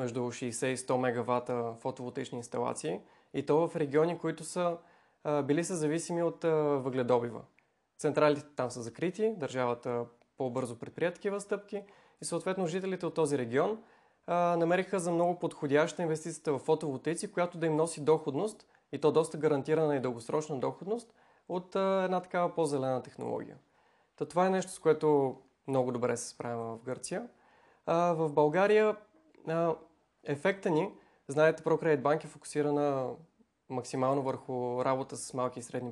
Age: 20-39